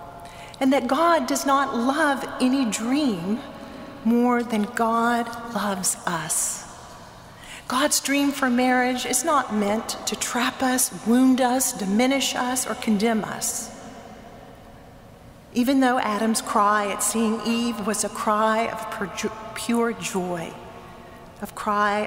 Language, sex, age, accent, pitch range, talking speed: English, female, 40-59, American, 210-255 Hz, 125 wpm